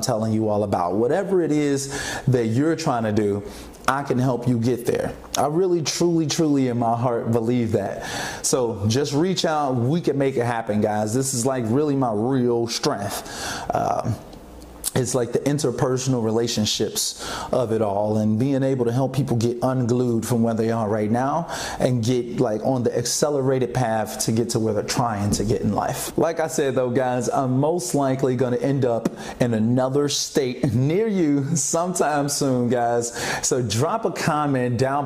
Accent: American